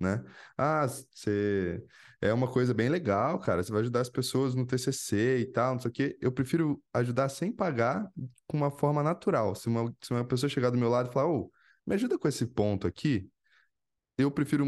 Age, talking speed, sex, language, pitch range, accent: 10-29, 215 wpm, male, Portuguese, 105-150 Hz, Brazilian